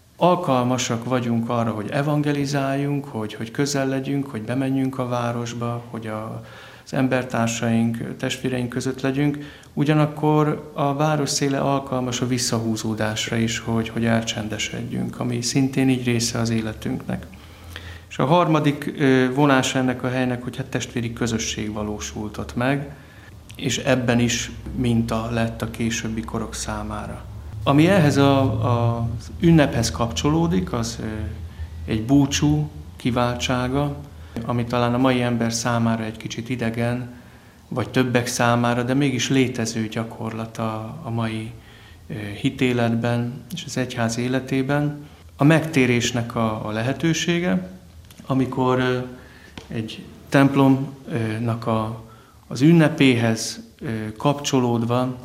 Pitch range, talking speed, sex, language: 115-135 Hz, 115 wpm, male, Hungarian